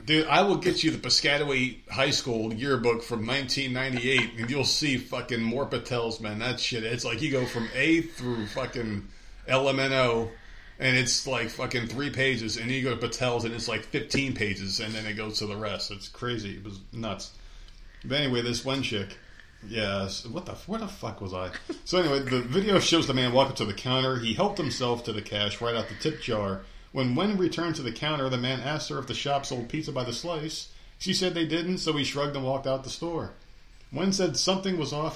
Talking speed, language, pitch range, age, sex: 220 wpm, English, 105-135 Hz, 40-59, male